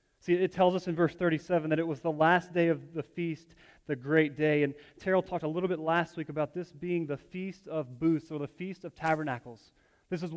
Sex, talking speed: male, 235 wpm